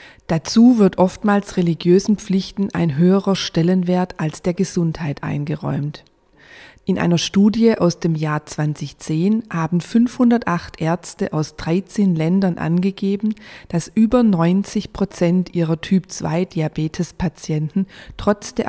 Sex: female